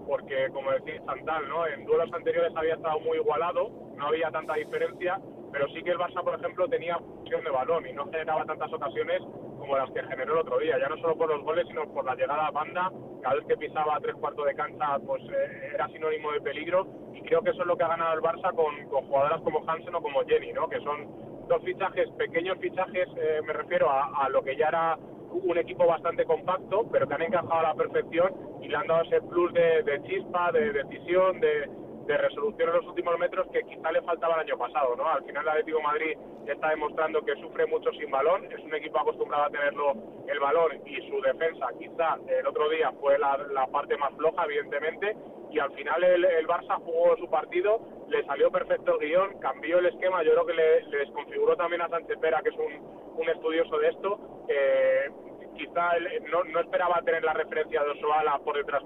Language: Spanish